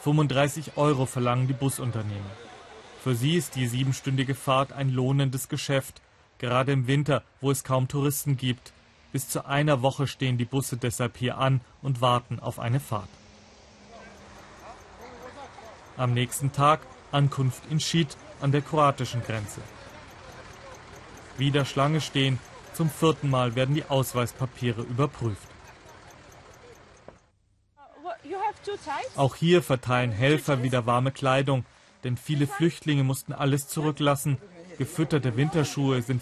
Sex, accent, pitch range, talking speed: male, German, 125-145 Hz, 120 wpm